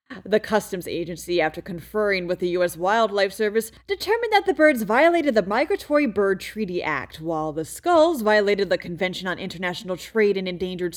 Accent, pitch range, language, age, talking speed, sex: American, 180-280 Hz, English, 30-49, 170 wpm, female